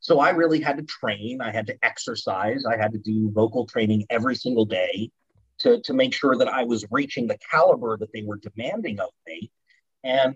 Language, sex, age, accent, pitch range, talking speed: English, male, 30-49, American, 110-160 Hz, 210 wpm